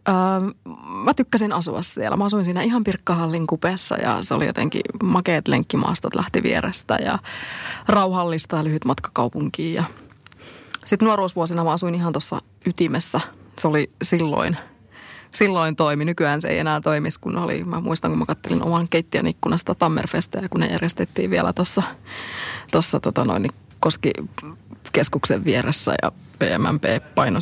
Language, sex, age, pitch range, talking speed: Finnish, female, 20-39, 165-205 Hz, 145 wpm